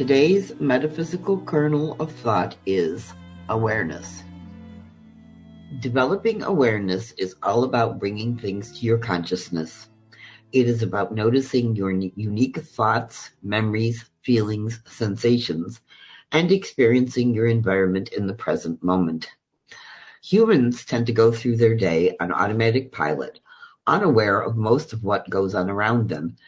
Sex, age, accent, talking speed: female, 50-69, American, 120 wpm